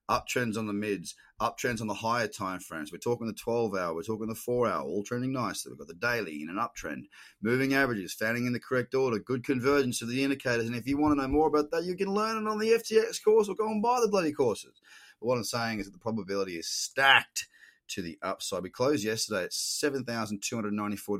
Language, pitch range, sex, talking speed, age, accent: English, 105-145 Hz, male, 230 wpm, 30-49, Australian